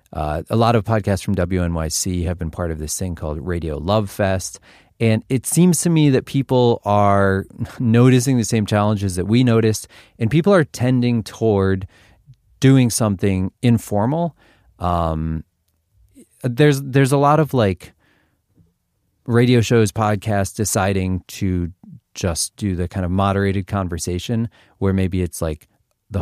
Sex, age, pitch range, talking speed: male, 30-49, 90-115 Hz, 145 wpm